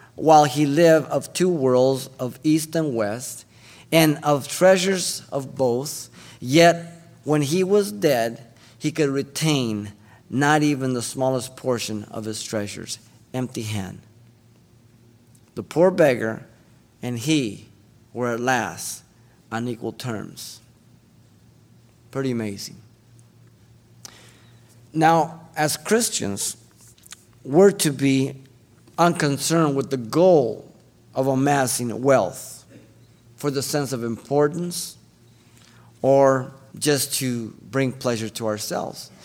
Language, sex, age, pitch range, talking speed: English, male, 50-69, 115-155 Hz, 110 wpm